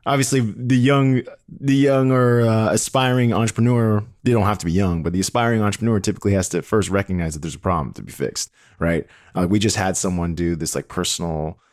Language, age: English, 20-39